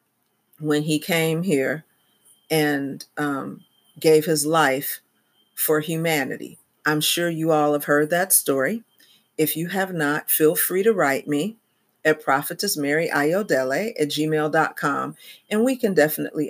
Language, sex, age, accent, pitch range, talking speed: English, female, 40-59, American, 150-170 Hz, 130 wpm